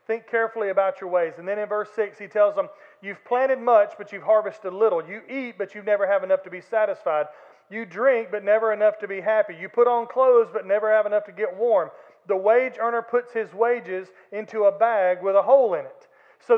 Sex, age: male, 40-59